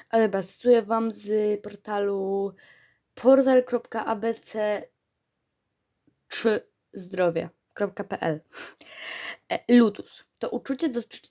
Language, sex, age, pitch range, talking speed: Polish, female, 20-39, 200-260 Hz, 55 wpm